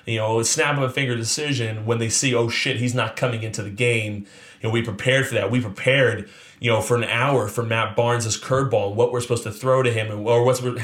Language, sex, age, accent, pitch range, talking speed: English, male, 30-49, American, 110-130 Hz, 260 wpm